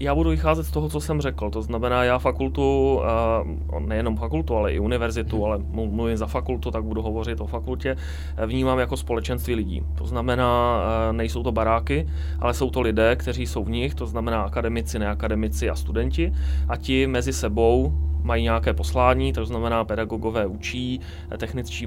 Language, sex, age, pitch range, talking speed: Czech, male, 30-49, 75-110 Hz, 165 wpm